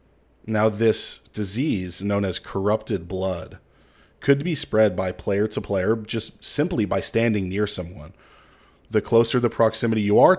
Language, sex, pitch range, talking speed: English, male, 100-115 Hz, 150 wpm